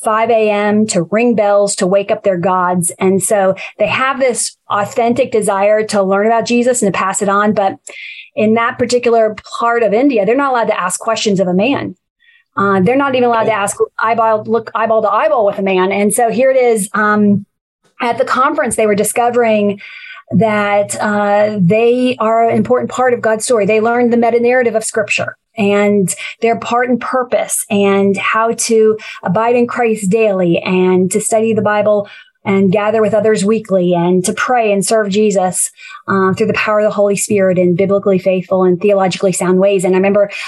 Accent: American